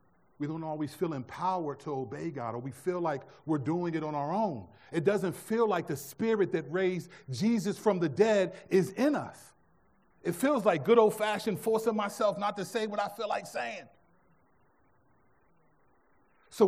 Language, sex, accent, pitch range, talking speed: English, male, American, 130-190 Hz, 180 wpm